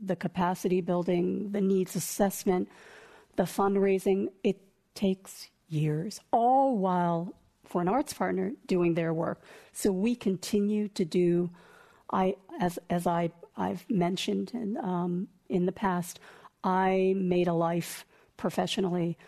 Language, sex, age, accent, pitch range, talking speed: English, female, 50-69, American, 175-200 Hz, 130 wpm